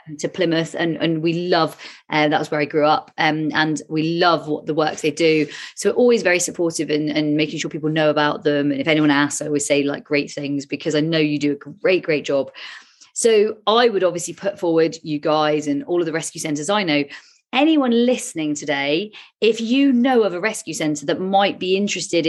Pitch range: 150-185 Hz